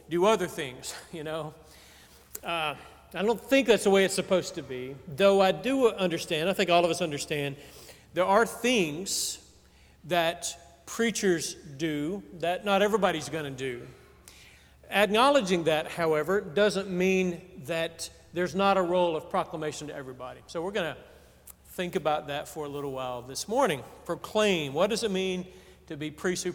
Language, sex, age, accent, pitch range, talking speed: English, male, 40-59, American, 155-210 Hz, 165 wpm